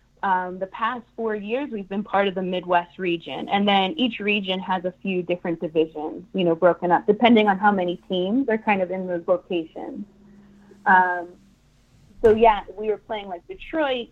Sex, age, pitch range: female, 30-49, 180-215 Hz